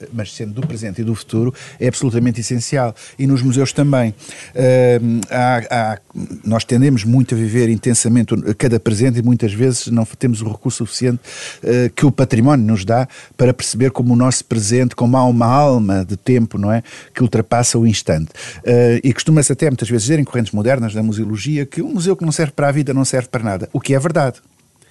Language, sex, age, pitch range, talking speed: Portuguese, male, 50-69, 115-150 Hz, 205 wpm